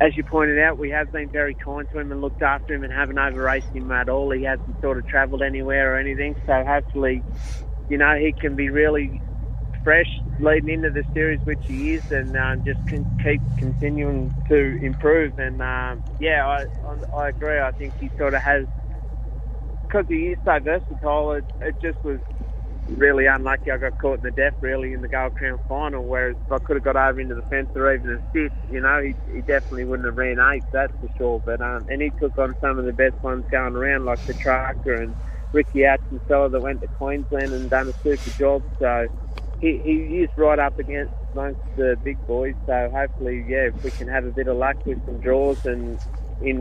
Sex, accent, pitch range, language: male, Australian, 125-145 Hz, English